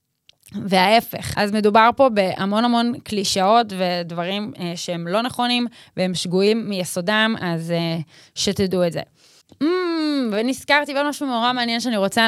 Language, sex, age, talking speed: Hebrew, female, 20-39, 135 wpm